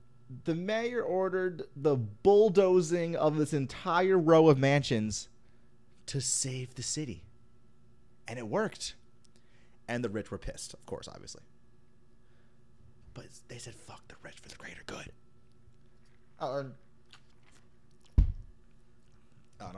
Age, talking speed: 30-49, 110 wpm